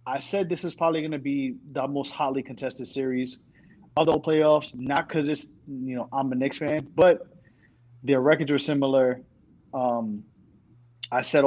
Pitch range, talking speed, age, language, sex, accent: 120-150 Hz, 175 wpm, 30-49, English, male, American